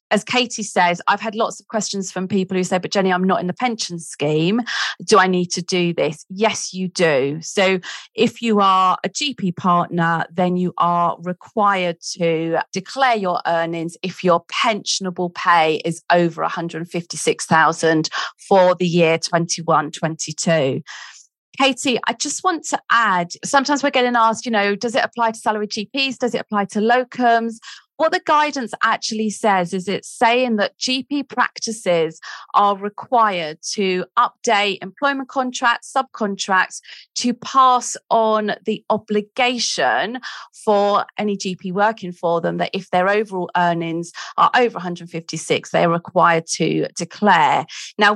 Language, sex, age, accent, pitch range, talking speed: English, female, 40-59, British, 175-230 Hz, 150 wpm